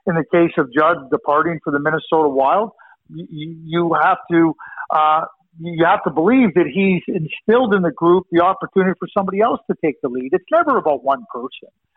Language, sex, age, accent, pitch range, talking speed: English, male, 50-69, American, 160-205 Hz, 195 wpm